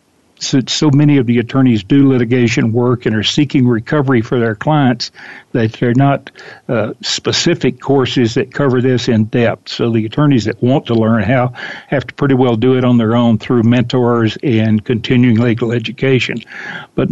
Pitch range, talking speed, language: 115-130 Hz, 180 wpm, English